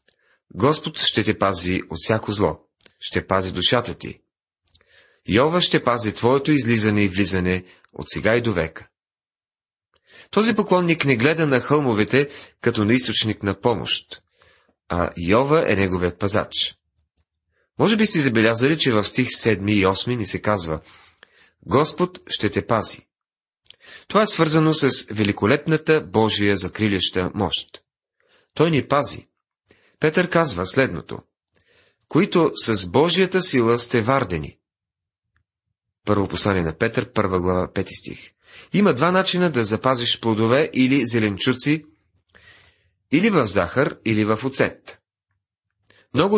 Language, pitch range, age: Bulgarian, 100-140 Hz, 40-59